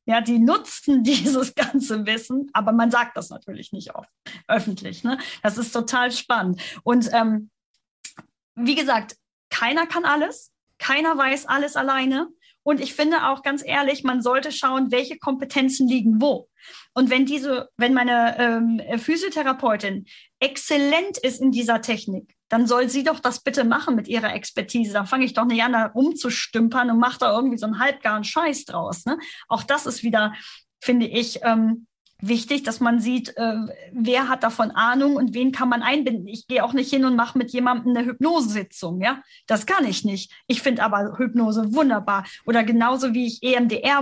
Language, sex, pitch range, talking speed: German, female, 225-265 Hz, 175 wpm